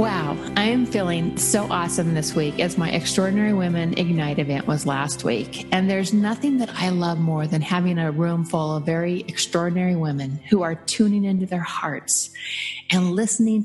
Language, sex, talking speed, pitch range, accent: English, female, 180 wpm, 160-200 Hz, American